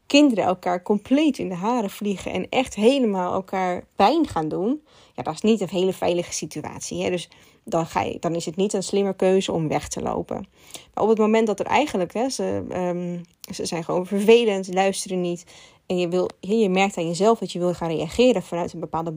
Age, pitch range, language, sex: 20-39, 185-255 Hz, Dutch, female